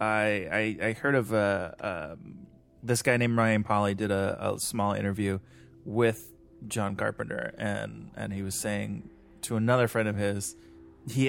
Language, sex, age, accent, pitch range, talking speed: English, male, 20-39, American, 105-140 Hz, 165 wpm